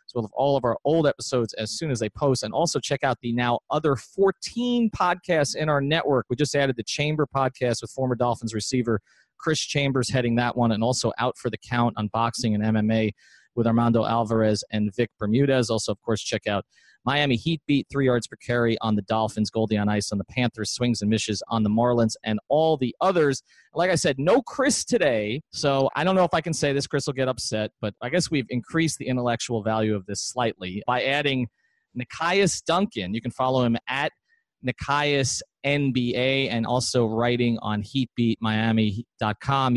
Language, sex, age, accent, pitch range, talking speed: English, male, 30-49, American, 110-145 Hz, 200 wpm